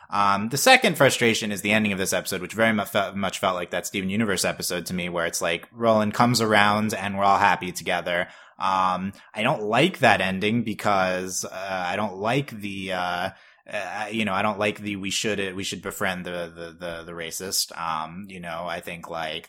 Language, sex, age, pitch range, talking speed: English, male, 20-39, 95-120 Hz, 210 wpm